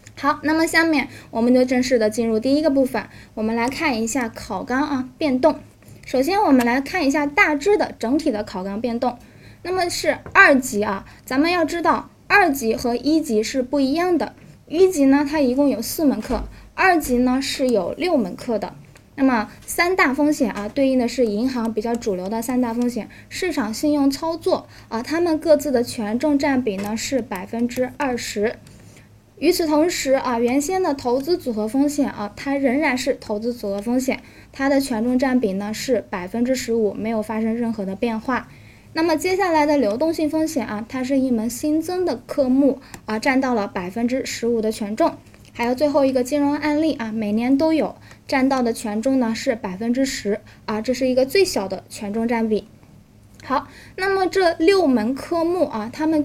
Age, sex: 10-29, female